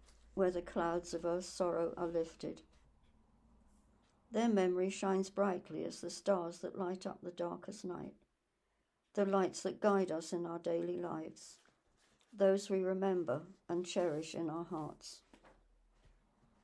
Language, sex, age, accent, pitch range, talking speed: English, male, 60-79, British, 170-195 Hz, 135 wpm